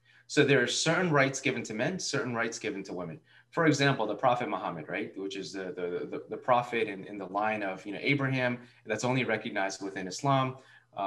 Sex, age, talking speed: male, 20-39, 210 wpm